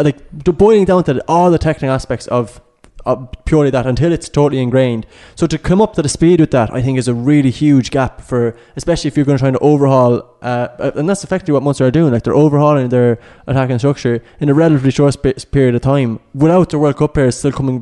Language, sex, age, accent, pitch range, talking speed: English, male, 20-39, Irish, 125-150 Hz, 235 wpm